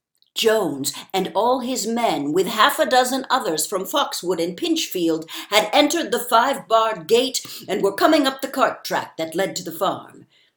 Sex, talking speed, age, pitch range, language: female, 180 wpm, 60-79, 175-265 Hz, English